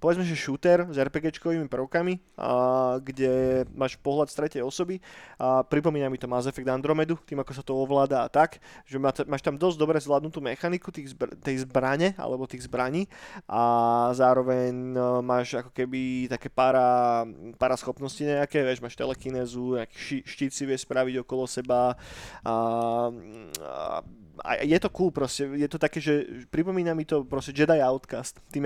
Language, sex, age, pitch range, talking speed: Slovak, male, 20-39, 130-155 Hz, 160 wpm